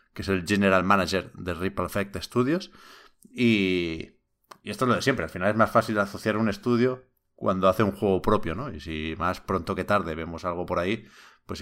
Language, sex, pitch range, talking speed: Spanish, male, 95-125 Hz, 210 wpm